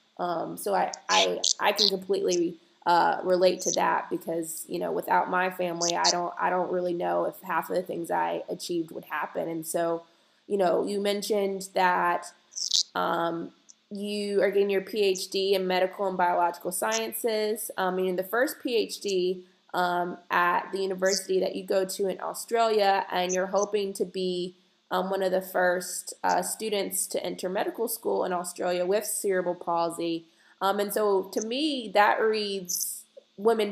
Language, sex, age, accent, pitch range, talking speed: English, female, 20-39, American, 180-205 Hz, 170 wpm